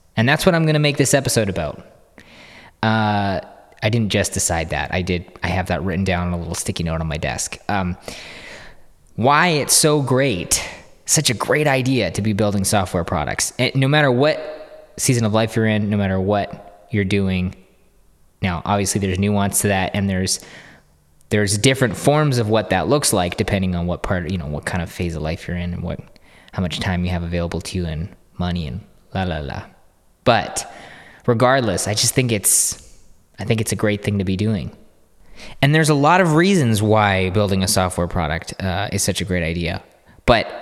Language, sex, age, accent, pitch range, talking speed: English, male, 20-39, American, 90-115 Hz, 200 wpm